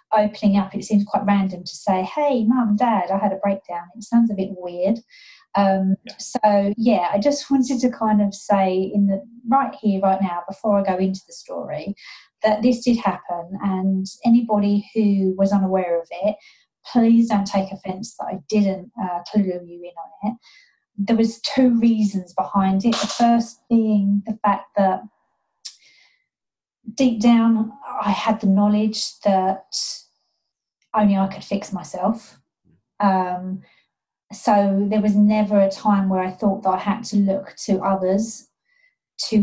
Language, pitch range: English, 190-220 Hz